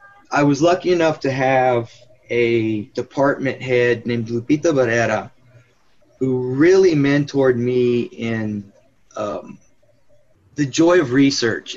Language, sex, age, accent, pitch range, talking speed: English, male, 20-39, American, 120-140 Hz, 110 wpm